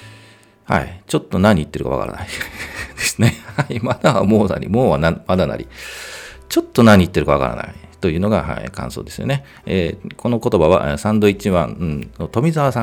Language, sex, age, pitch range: Japanese, male, 40-59, 85-120 Hz